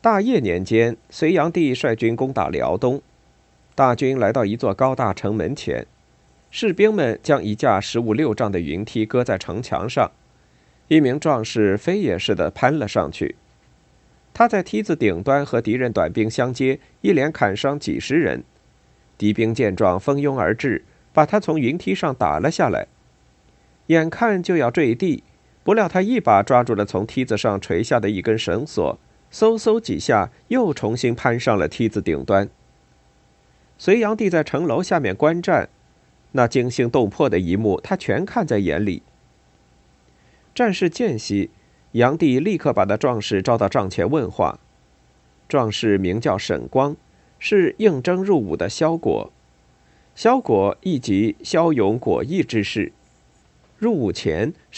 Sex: male